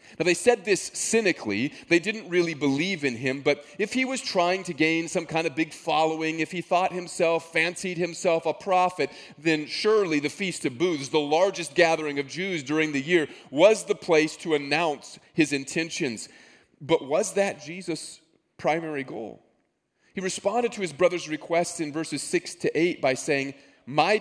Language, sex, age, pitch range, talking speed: English, male, 30-49, 145-180 Hz, 180 wpm